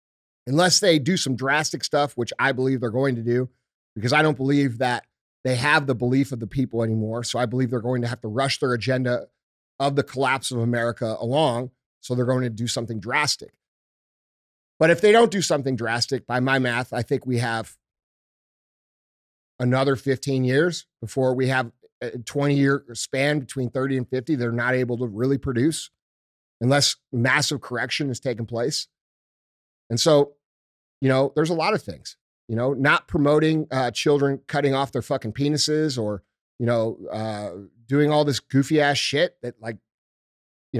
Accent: American